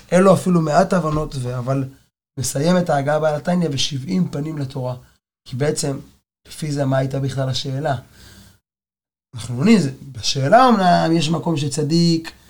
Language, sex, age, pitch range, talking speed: Hebrew, male, 20-39, 140-190 Hz, 135 wpm